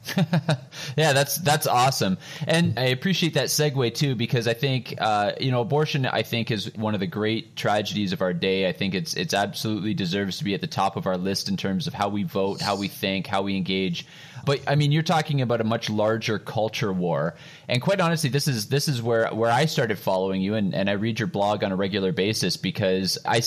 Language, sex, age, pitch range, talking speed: English, male, 20-39, 110-145 Hz, 230 wpm